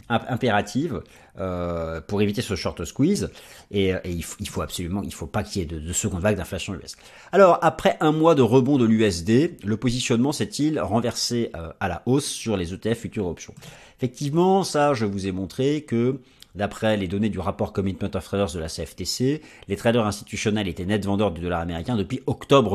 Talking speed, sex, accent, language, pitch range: 200 wpm, male, French, French, 95-130 Hz